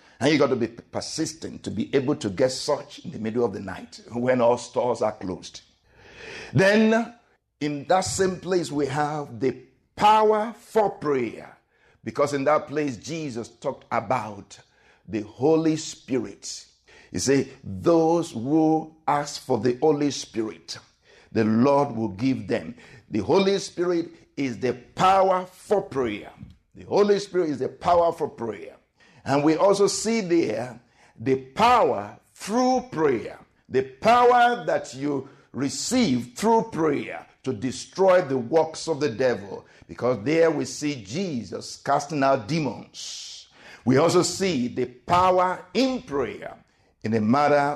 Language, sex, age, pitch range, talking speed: English, male, 60-79, 120-175 Hz, 145 wpm